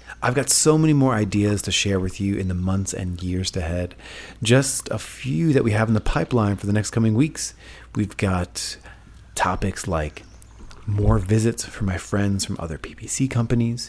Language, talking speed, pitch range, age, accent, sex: English, 185 wpm, 95-115 Hz, 30-49, American, male